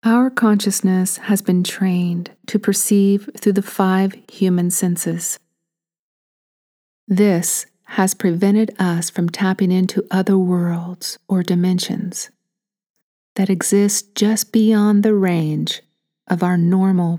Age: 50-69